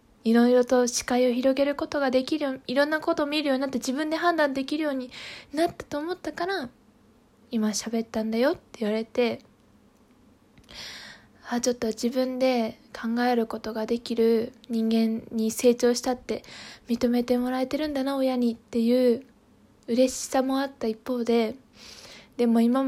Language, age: Japanese, 20-39